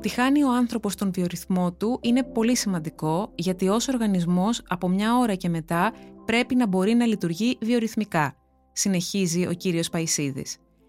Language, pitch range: Greek, 175-235 Hz